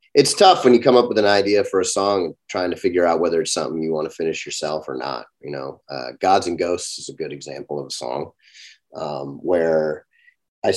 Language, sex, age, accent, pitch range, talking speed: English, male, 30-49, American, 80-110 Hz, 240 wpm